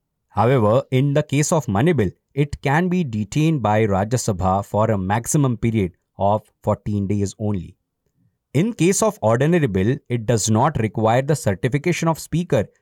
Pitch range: 105-155 Hz